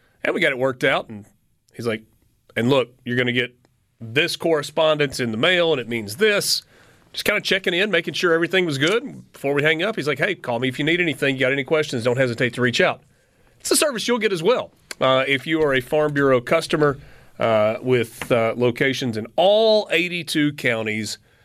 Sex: male